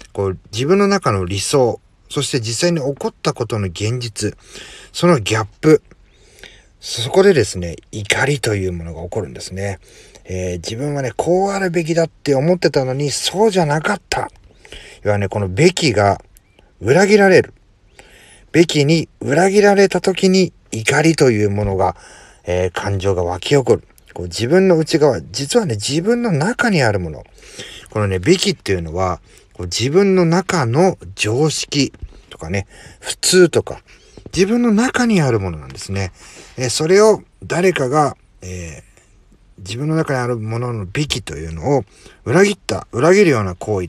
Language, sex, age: Japanese, male, 40-59